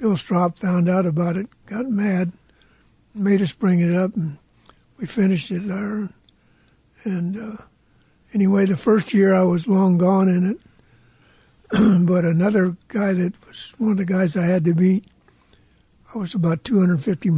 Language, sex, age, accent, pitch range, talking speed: English, male, 60-79, American, 175-200 Hz, 160 wpm